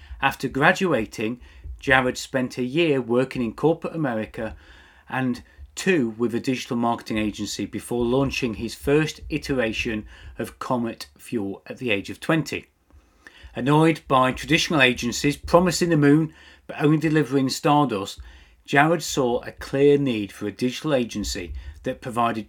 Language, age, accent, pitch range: English, 40-59, British, 105-150 Hz